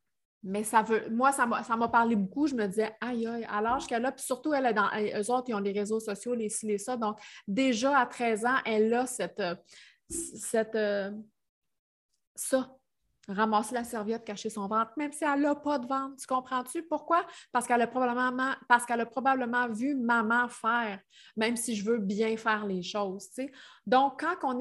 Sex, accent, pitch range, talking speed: female, Canadian, 215-265 Hz, 200 wpm